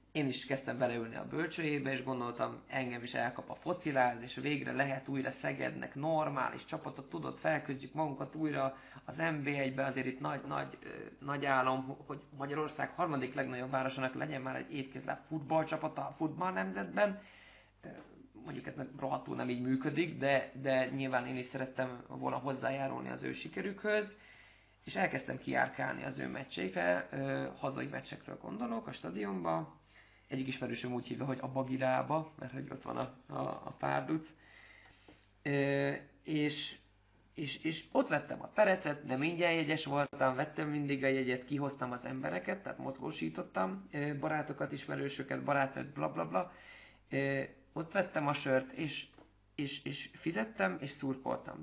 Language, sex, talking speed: Hungarian, male, 145 wpm